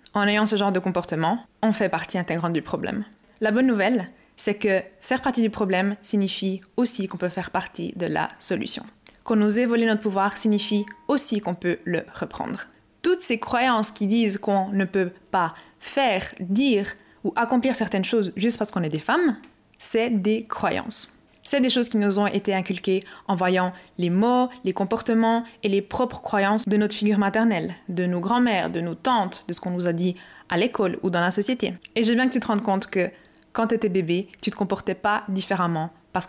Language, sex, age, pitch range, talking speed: French, female, 20-39, 185-225 Hz, 205 wpm